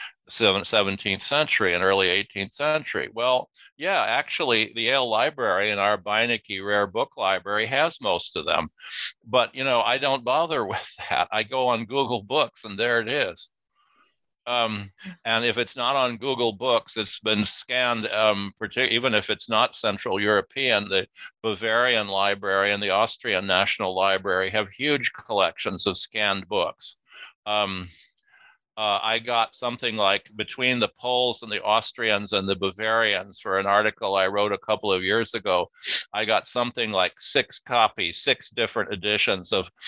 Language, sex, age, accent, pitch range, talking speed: English, male, 50-69, American, 100-115 Hz, 160 wpm